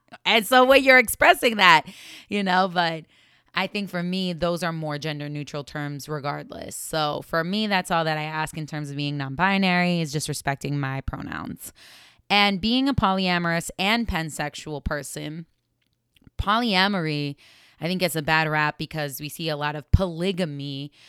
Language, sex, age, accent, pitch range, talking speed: English, female, 20-39, American, 145-175 Hz, 170 wpm